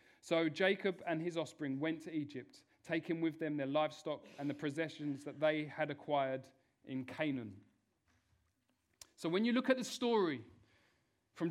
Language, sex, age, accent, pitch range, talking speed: English, male, 40-59, British, 150-200 Hz, 155 wpm